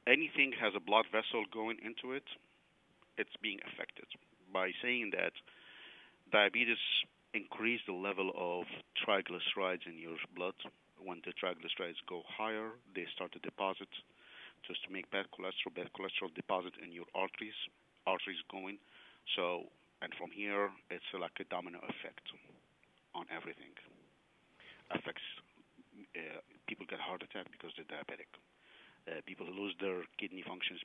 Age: 50-69